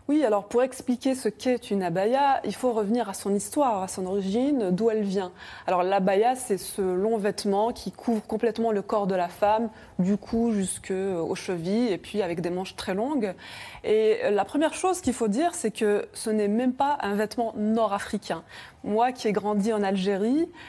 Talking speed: 195 wpm